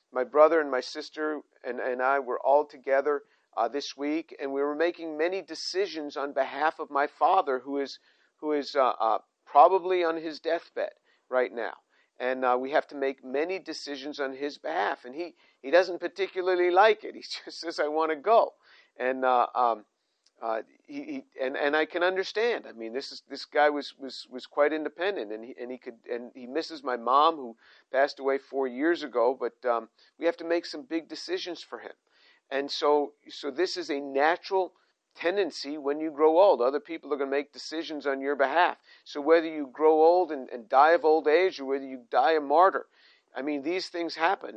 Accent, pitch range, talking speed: American, 140-180 Hz, 210 wpm